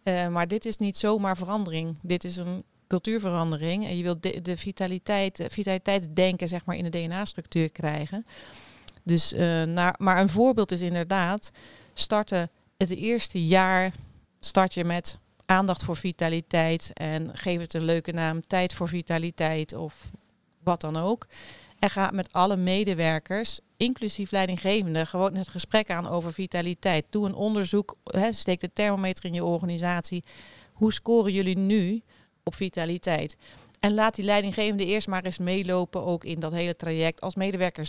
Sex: female